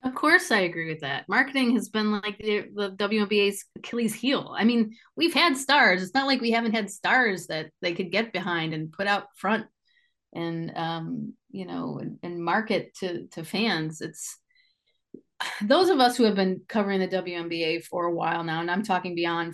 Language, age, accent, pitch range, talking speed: English, 30-49, American, 180-250 Hz, 195 wpm